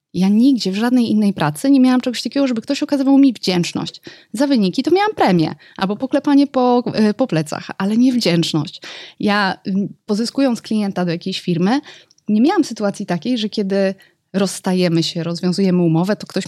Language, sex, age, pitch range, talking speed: Polish, female, 20-39, 180-255 Hz, 170 wpm